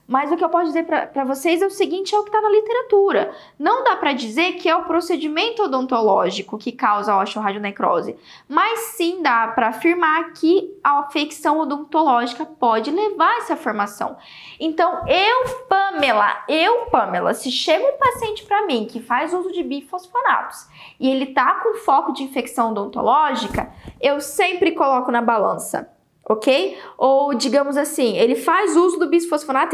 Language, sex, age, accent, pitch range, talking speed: Portuguese, female, 10-29, Brazilian, 260-365 Hz, 165 wpm